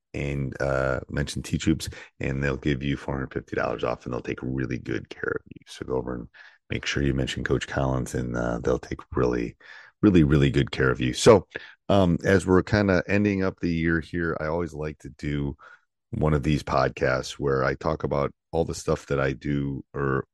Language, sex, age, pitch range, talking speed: English, male, 30-49, 65-75 Hz, 205 wpm